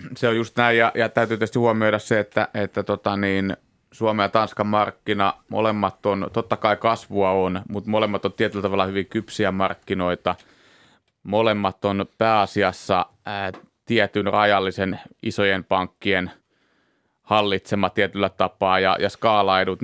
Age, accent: 30-49, native